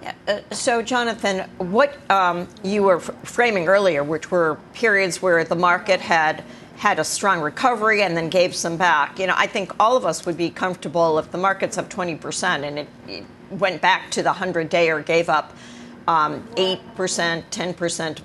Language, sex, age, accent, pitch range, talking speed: English, female, 50-69, American, 175-210 Hz, 190 wpm